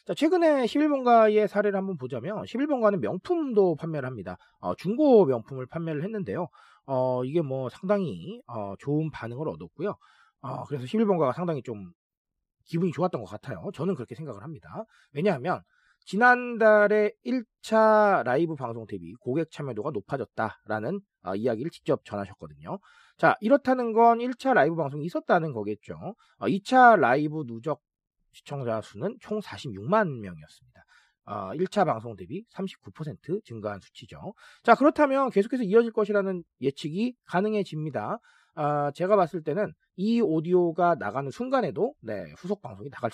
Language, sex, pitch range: Korean, male, 135-215 Hz